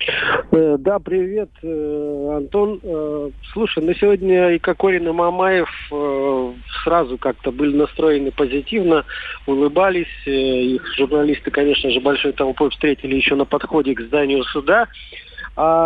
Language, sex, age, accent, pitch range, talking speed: Russian, male, 40-59, native, 140-165 Hz, 130 wpm